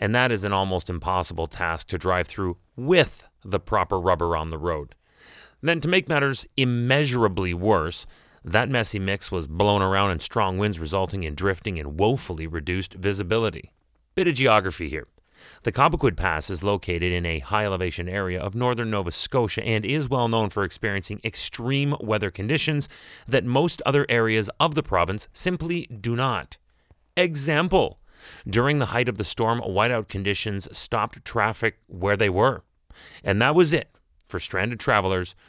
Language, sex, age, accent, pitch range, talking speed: English, male, 30-49, American, 90-120 Hz, 165 wpm